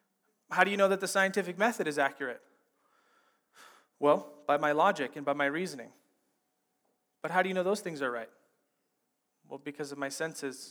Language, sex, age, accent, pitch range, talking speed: English, male, 30-49, American, 150-195 Hz, 180 wpm